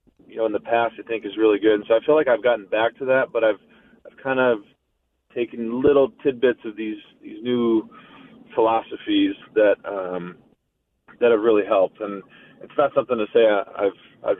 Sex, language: male, English